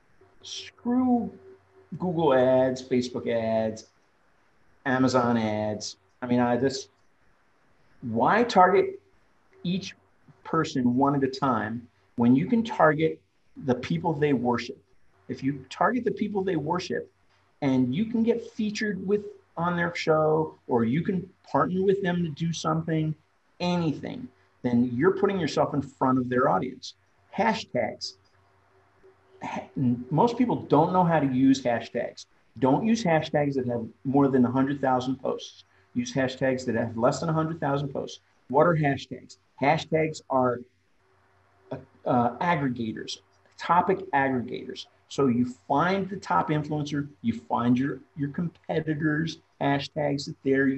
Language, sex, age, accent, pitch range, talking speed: English, male, 50-69, American, 125-170 Hz, 130 wpm